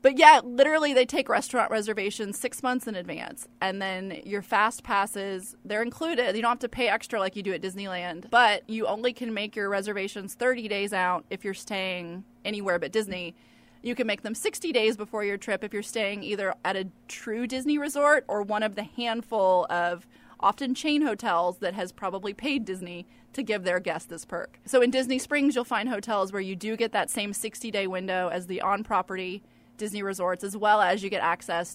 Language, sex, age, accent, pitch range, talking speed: English, female, 20-39, American, 185-235 Hz, 205 wpm